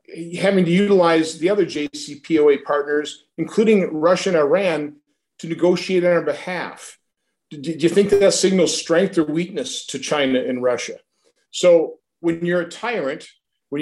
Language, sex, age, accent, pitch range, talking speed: English, male, 50-69, American, 145-195 Hz, 150 wpm